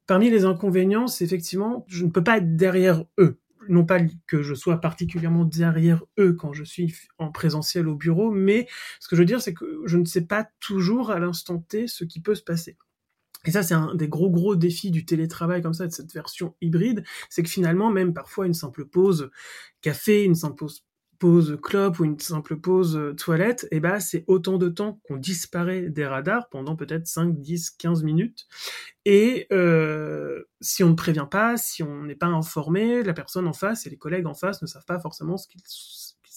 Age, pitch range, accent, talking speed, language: 30-49, 160-190 Hz, French, 210 wpm, French